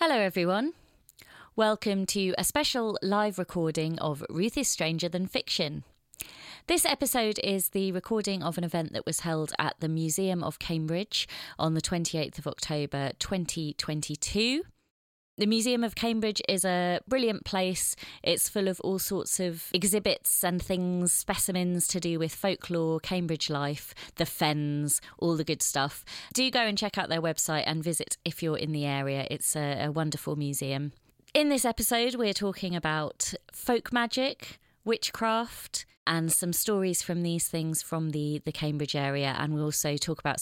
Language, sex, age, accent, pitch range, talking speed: English, female, 30-49, British, 155-210 Hz, 165 wpm